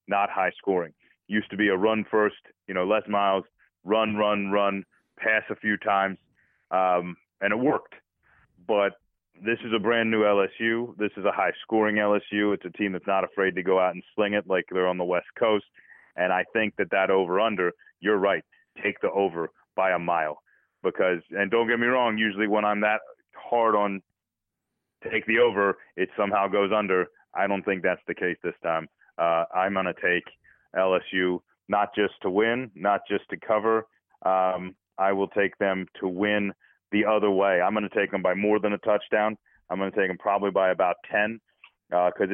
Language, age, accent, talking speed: English, 30-49, American, 195 wpm